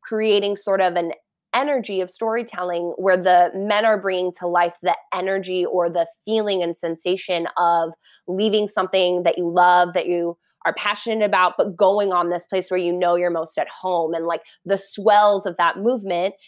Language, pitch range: English, 170-195 Hz